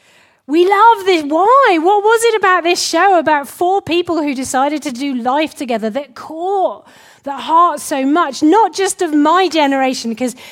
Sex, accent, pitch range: female, British, 235-315 Hz